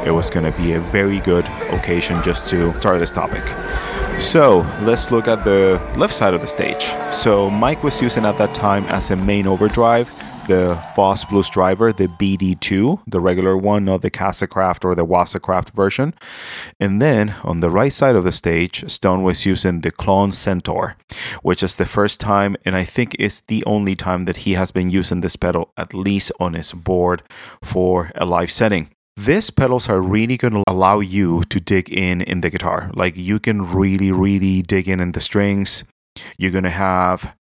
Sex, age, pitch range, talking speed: male, 30-49, 90-100 Hz, 195 wpm